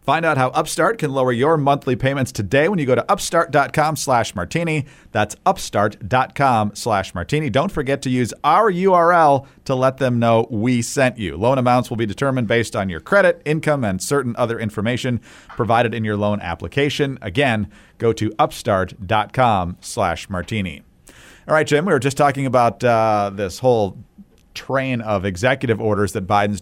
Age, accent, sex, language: 40-59, American, male, English